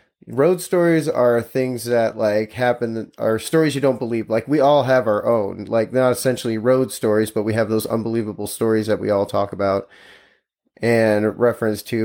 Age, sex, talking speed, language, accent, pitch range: 30-49, male, 185 wpm, English, American, 110-130 Hz